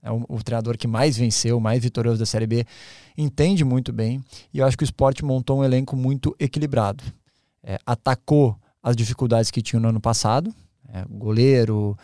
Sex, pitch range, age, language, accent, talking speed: male, 125-160 Hz, 20-39, Portuguese, Brazilian, 180 wpm